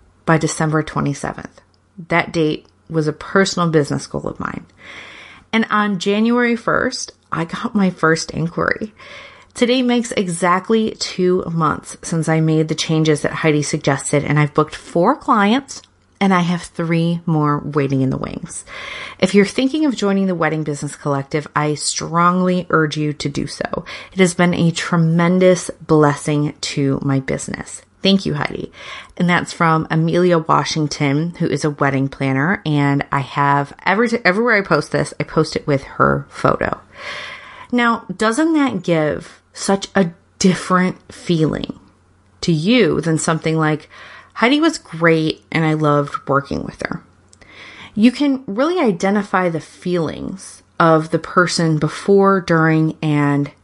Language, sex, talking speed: English, female, 150 wpm